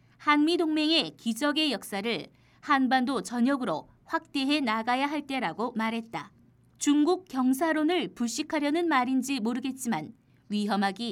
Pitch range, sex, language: 245-300 Hz, female, Korean